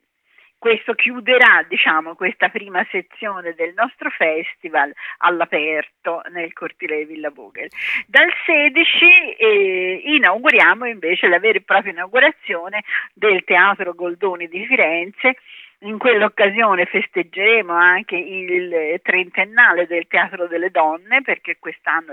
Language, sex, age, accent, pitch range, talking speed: Italian, female, 50-69, native, 175-275 Hz, 115 wpm